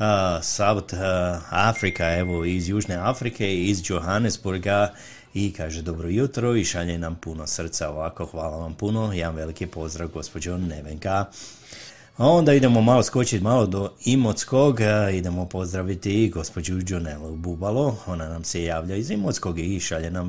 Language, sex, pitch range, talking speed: Croatian, male, 85-105 Hz, 150 wpm